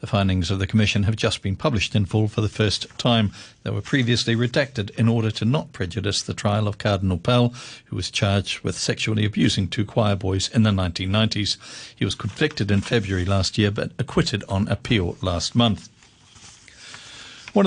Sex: male